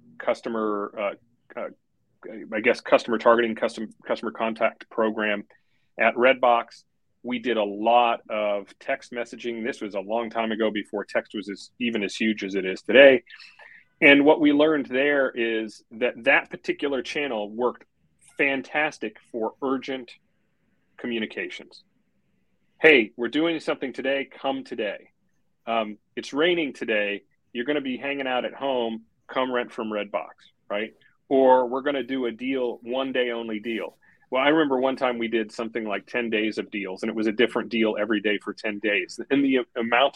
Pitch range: 110-130 Hz